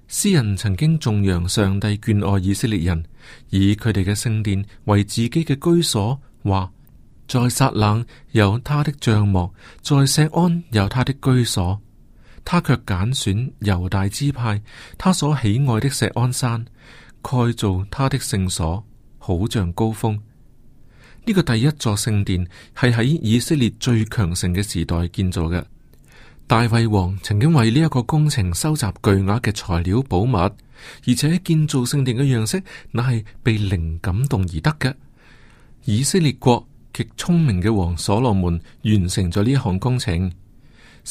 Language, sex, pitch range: Chinese, male, 100-135 Hz